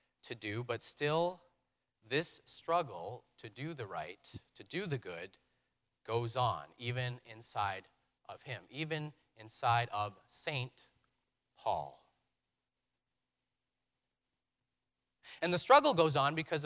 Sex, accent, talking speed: male, American, 110 wpm